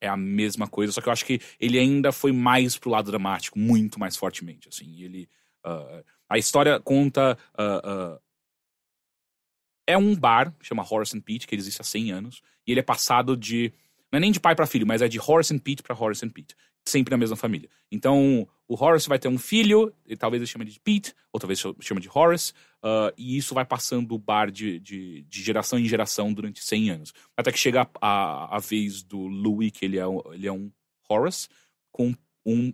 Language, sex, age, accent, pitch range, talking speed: Portuguese, male, 30-49, Brazilian, 105-135 Hz, 225 wpm